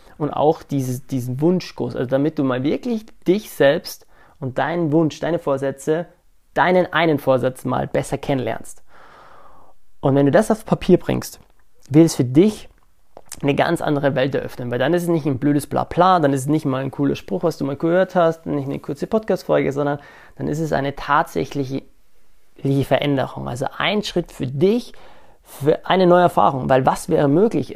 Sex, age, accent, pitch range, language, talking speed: male, 30-49, German, 140-175 Hz, German, 180 wpm